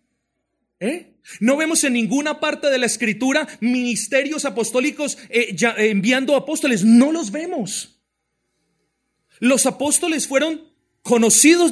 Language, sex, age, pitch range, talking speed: Spanish, male, 40-59, 180-285 Hz, 110 wpm